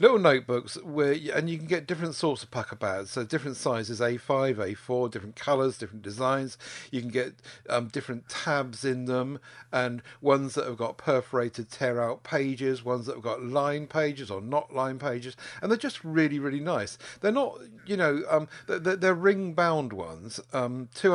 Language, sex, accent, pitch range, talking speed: English, male, British, 120-155 Hz, 180 wpm